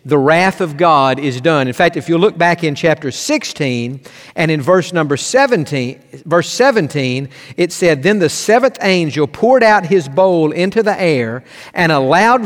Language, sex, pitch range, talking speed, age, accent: English, male, 150-200 Hz, 185 wpm, 50-69, American